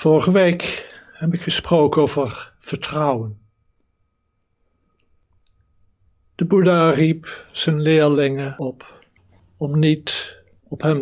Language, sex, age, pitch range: Dutch, male, 60-79, 110-155 Hz